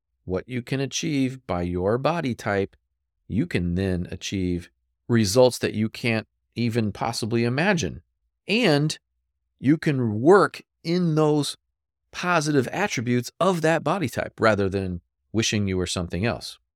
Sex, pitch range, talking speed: male, 80-110 Hz, 135 wpm